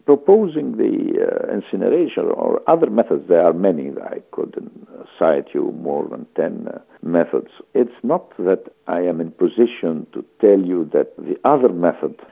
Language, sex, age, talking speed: English, male, 60-79, 160 wpm